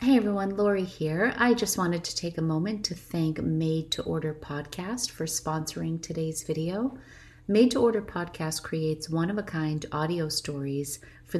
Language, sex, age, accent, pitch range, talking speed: English, female, 30-49, American, 150-195 Hz, 160 wpm